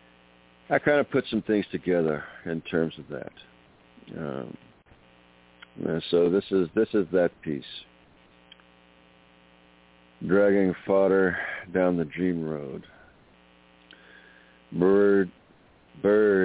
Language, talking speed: English, 100 wpm